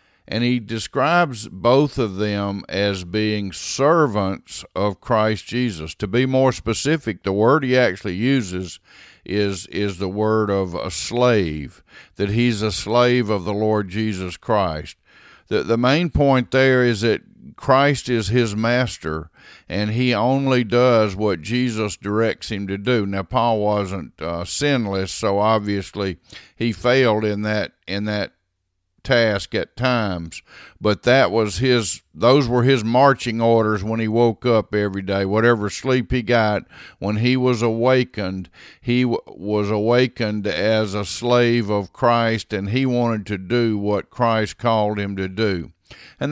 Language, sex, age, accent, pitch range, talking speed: English, male, 50-69, American, 100-125 Hz, 150 wpm